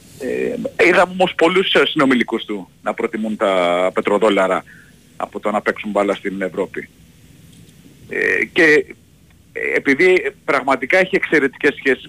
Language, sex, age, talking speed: Greek, male, 40-59, 120 wpm